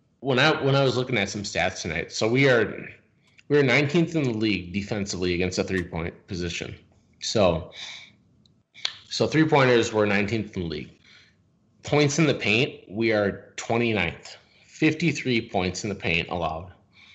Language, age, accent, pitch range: English, 20-39, American, 90-120 Hz